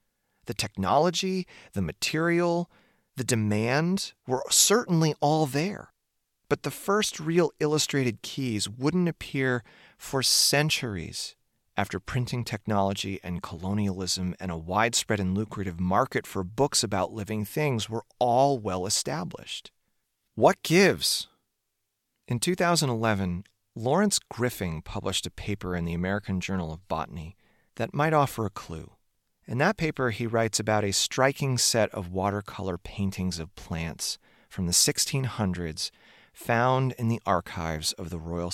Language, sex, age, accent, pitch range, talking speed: English, male, 30-49, American, 95-130 Hz, 130 wpm